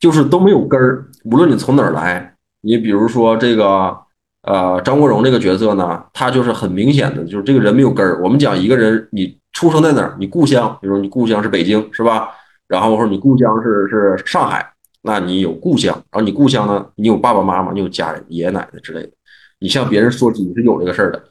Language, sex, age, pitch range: Chinese, male, 20-39, 100-140 Hz